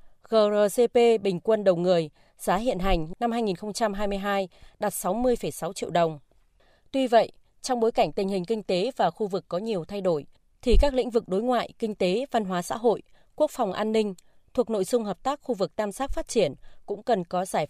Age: 20-39